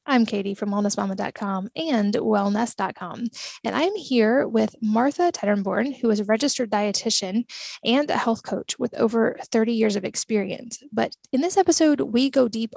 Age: 10-29